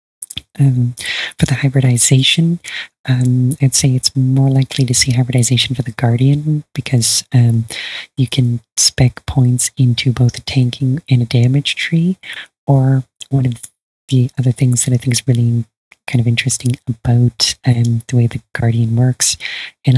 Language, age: English, 30-49